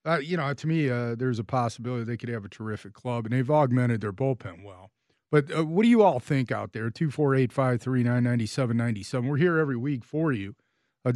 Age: 40-59